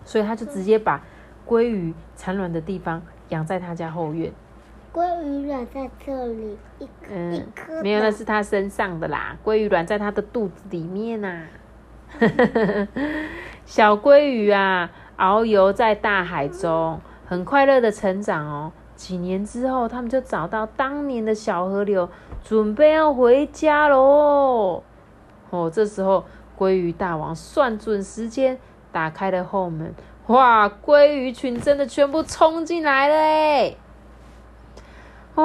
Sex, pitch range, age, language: female, 185-260 Hz, 30-49, Chinese